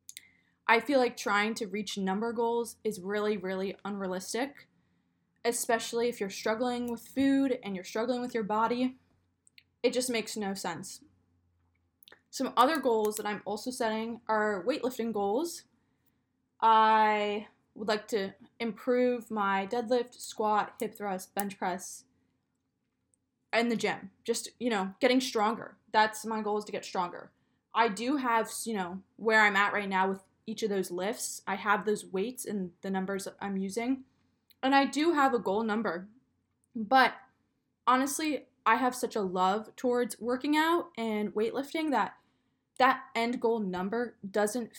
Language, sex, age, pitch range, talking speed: English, female, 20-39, 200-245 Hz, 155 wpm